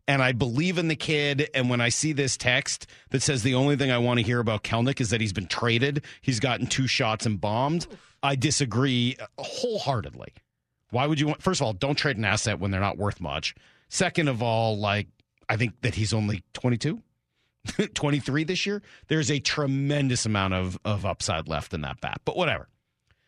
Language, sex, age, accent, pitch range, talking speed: English, male, 40-59, American, 115-155 Hz, 205 wpm